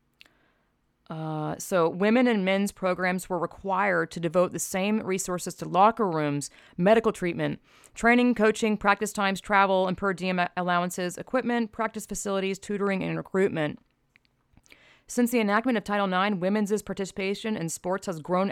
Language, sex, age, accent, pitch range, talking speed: English, female, 30-49, American, 175-220 Hz, 145 wpm